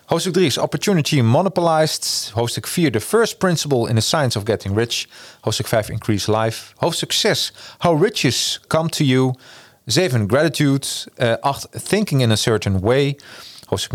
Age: 40-59